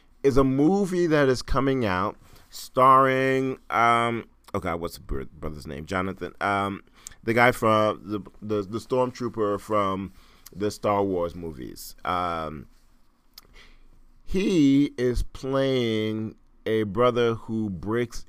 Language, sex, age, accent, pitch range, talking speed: English, male, 40-59, American, 90-120 Hz, 120 wpm